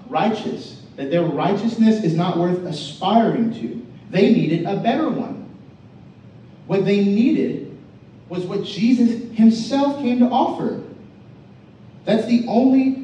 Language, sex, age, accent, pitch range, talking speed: English, male, 30-49, American, 150-230 Hz, 125 wpm